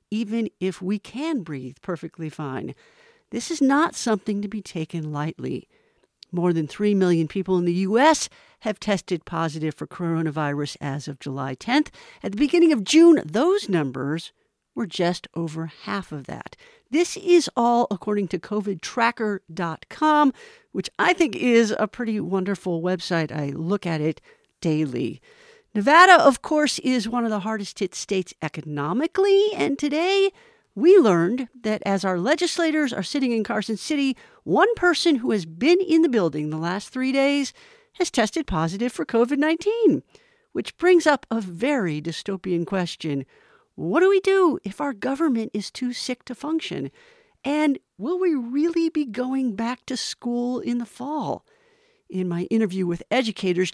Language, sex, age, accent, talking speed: English, female, 50-69, American, 155 wpm